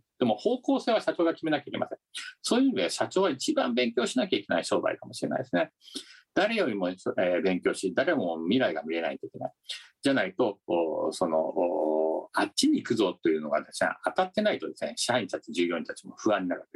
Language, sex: Japanese, male